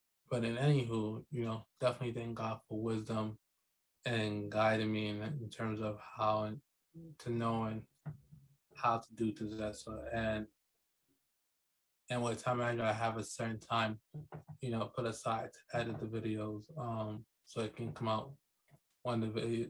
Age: 20-39